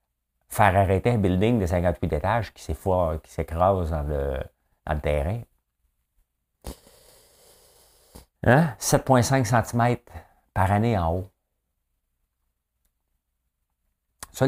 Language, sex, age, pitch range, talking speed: French, male, 50-69, 75-105 Hz, 95 wpm